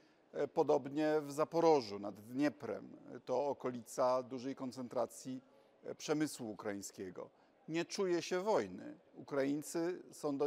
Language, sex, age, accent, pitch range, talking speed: Polish, male, 50-69, native, 125-160 Hz, 105 wpm